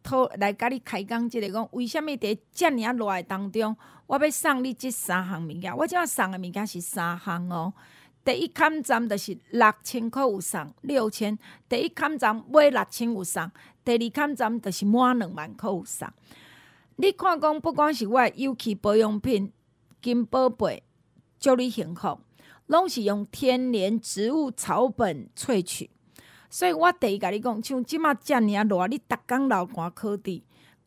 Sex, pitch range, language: female, 205-275 Hz, Chinese